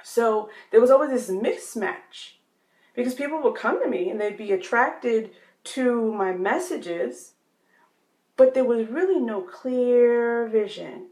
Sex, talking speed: female, 140 wpm